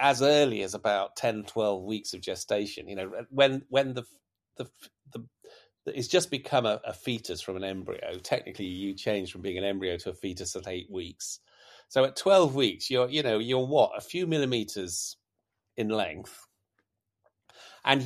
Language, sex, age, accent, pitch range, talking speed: English, male, 40-59, British, 100-135 Hz, 175 wpm